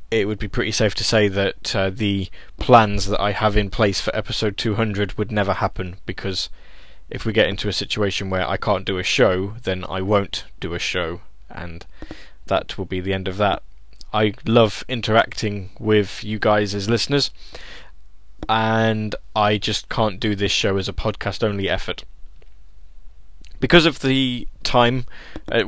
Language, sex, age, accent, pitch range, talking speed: English, male, 10-29, British, 95-110 Hz, 175 wpm